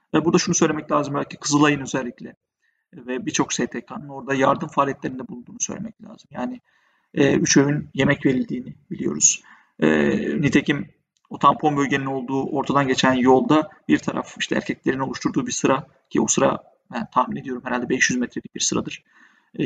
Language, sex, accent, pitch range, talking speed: Turkish, male, native, 135-185 Hz, 155 wpm